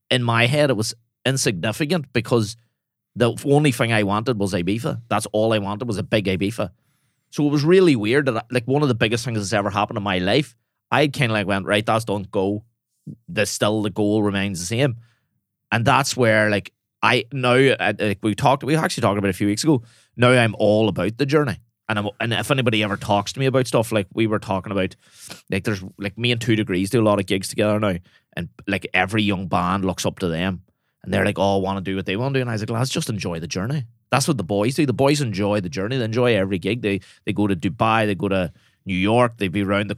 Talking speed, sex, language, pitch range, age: 260 wpm, male, English, 100-125 Hz, 30-49